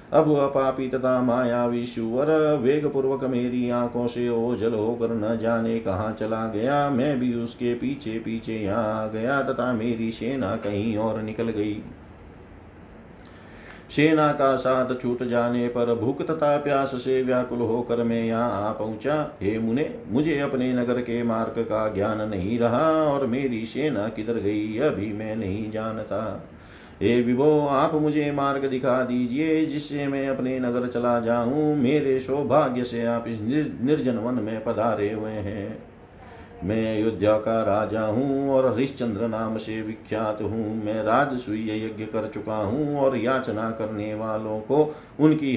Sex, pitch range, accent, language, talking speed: male, 110-130 Hz, native, Hindi, 145 wpm